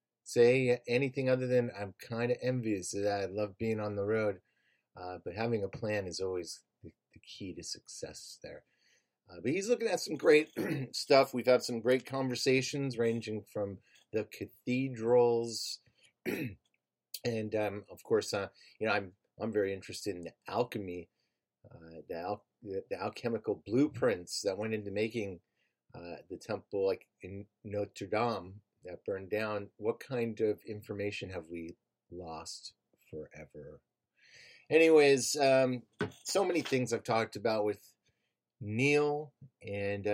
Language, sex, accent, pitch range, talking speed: English, male, American, 100-125 Hz, 150 wpm